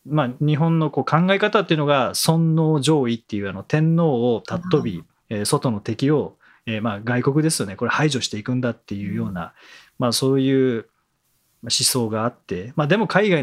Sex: male